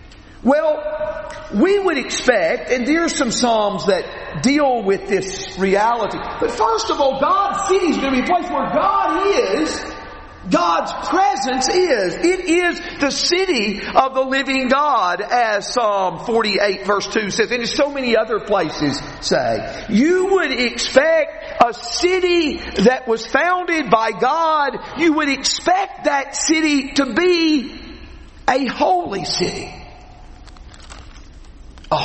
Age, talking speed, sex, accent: 50-69, 135 wpm, male, American